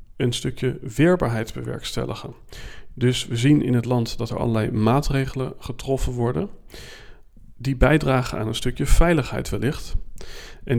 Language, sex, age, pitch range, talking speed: Dutch, male, 40-59, 115-130 Hz, 130 wpm